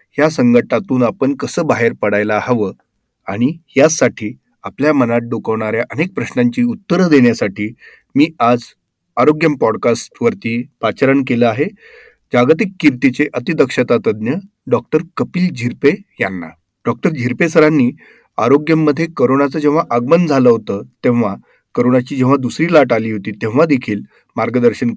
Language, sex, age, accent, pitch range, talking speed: Marathi, male, 40-59, native, 120-160 Hz, 120 wpm